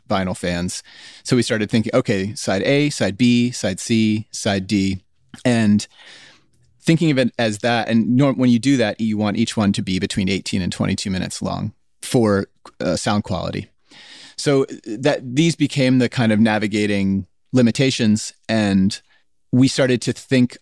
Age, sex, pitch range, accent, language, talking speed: 30-49, male, 100-125 Hz, American, English, 165 wpm